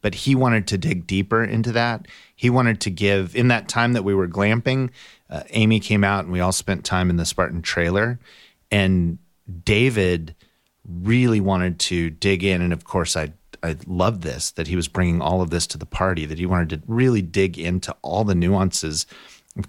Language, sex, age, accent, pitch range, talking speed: English, male, 30-49, American, 85-105 Hz, 205 wpm